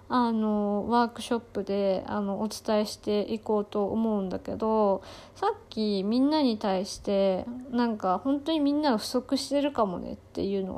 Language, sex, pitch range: Japanese, female, 205-260 Hz